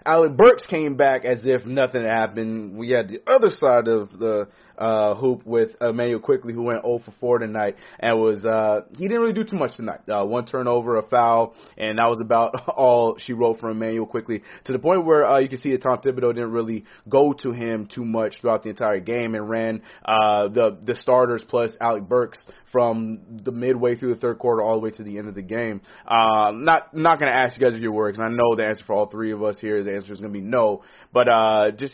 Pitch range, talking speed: 110-130 Hz, 235 wpm